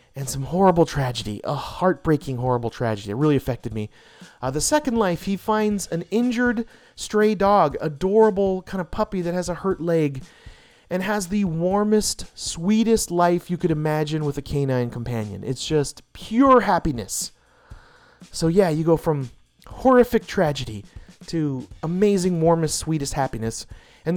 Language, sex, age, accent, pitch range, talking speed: English, male, 30-49, American, 125-185 Hz, 150 wpm